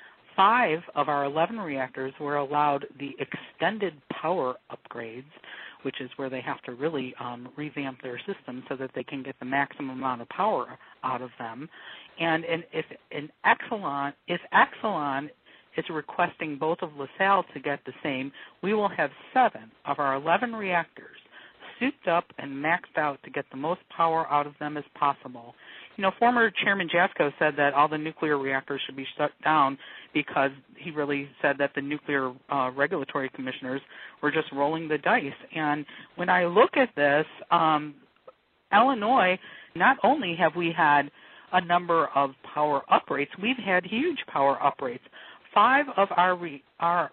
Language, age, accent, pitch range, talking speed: English, 60-79, American, 140-180 Hz, 165 wpm